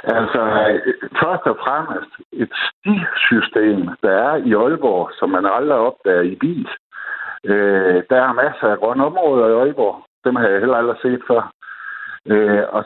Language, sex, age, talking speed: Danish, male, 60-79, 160 wpm